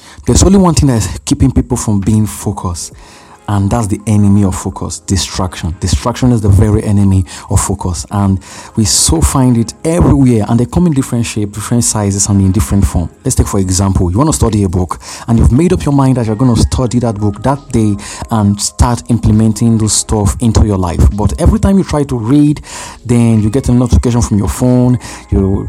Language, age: English, 30-49